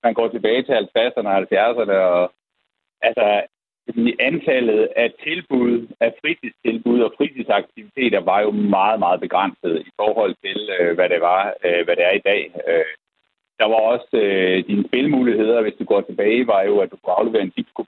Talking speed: 165 wpm